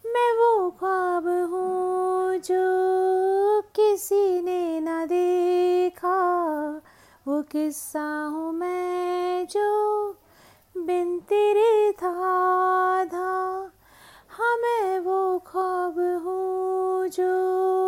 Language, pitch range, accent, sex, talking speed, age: Hindi, 250-375 Hz, native, female, 75 wpm, 30-49